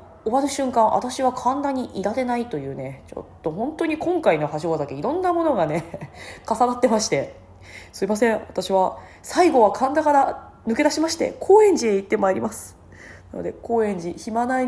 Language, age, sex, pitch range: Japanese, 20-39, female, 155-255 Hz